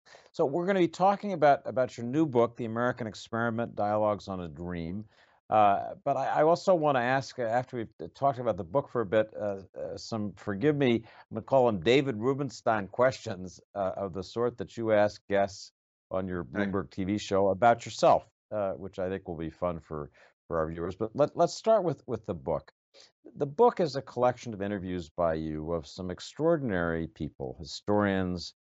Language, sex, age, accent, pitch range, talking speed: English, male, 60-79, American, 85-120 Hz, 200 wpm